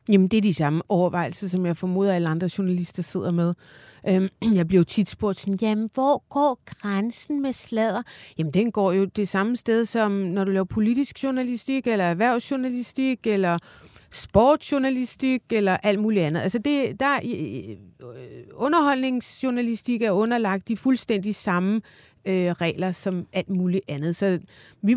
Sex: female